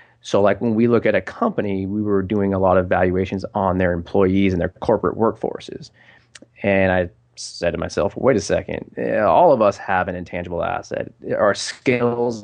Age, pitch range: 20-39, 95-110 Hz